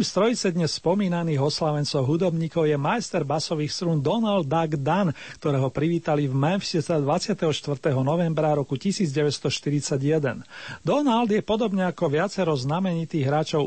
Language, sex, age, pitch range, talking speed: Slovak, male, 40-59, 145-180 Hz, 115 wpm